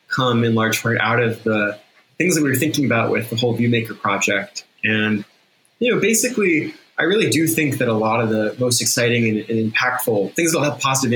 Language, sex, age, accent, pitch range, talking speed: English, male, 20-39, American, 110-130 Hz, 220 wpm